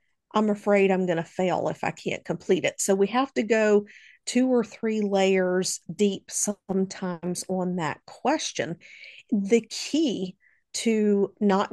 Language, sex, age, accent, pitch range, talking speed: English, female, 50-69, American, 185-220 Hz, 150 wpm